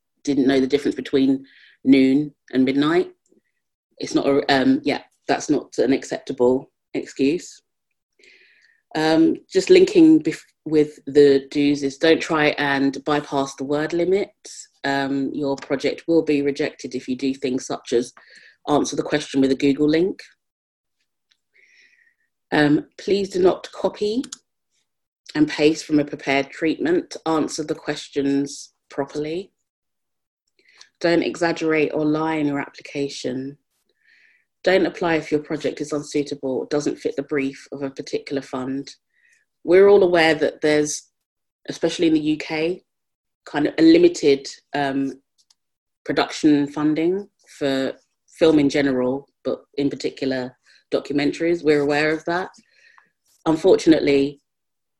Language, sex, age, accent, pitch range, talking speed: English, female, 30-49, British, 140-170 Hz, 125 wpm